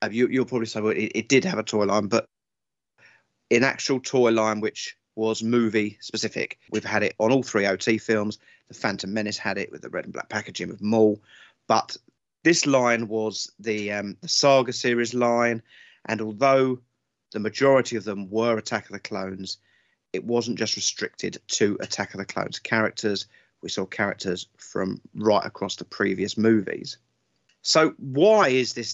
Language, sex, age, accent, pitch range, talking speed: English, male, 30-49, British, 105-125 Hz, 180 wpm